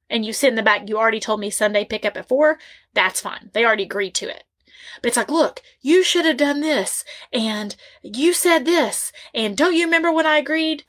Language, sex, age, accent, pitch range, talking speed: English, female, 30-49, American, 220-310 Hz, 230 wpm